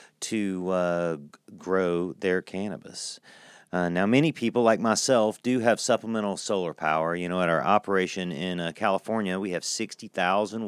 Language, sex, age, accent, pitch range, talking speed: English, male, 40-59, American, 85-110 Hz, 155 wpm